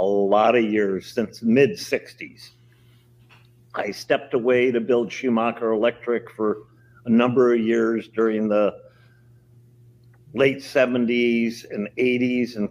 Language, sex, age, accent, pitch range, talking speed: English, male, 50-69, American, 105-120 Hz, 125 wpm